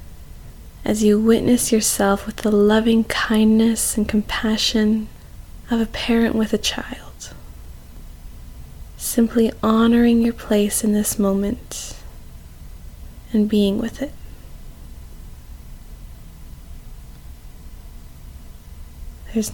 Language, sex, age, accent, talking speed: English, female, 20-39, American, 85 wpm